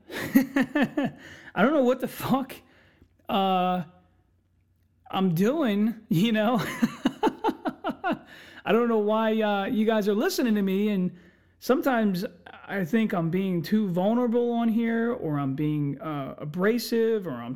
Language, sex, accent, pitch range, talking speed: English, male, American, 140-220 Hz, 135 wpm